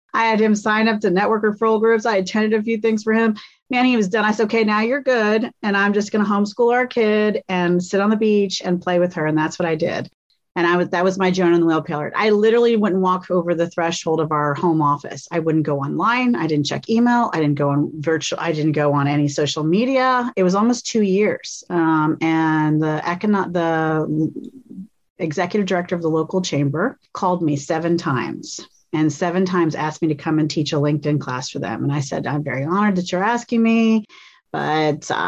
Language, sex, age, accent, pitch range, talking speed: English, female, 40-59, American, 160-225 Hz, 230 wpm